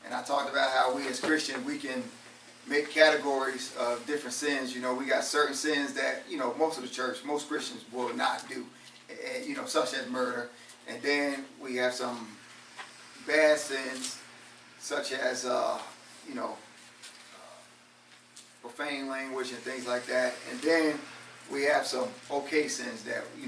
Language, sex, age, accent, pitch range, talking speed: English, male, 30-49, American, 130-155 Hz, 170 wpm